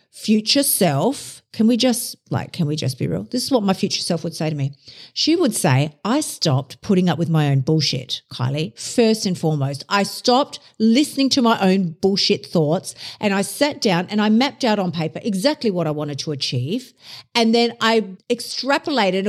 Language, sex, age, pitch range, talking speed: English, female, 50-69, 165-240 Hz, 200 wpm